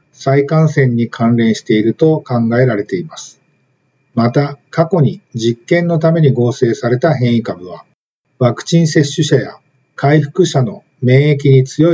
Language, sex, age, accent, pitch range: Japanese, male, 50-69, native, 125-160 Hz